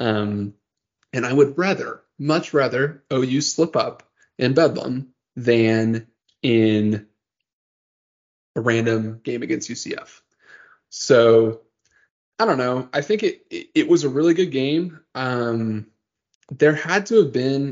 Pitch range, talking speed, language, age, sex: 115-150 Hz, 130 wpm, English, 20-39, male